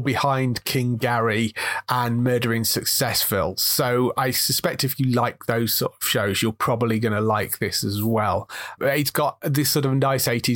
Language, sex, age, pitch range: English, male, 30-49, 115-140 Hz